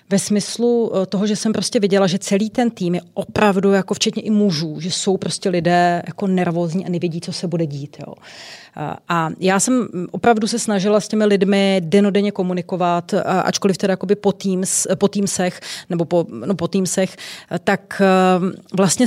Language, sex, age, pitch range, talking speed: Czech, female, 30-49, 190-230 Hz, 165 wpm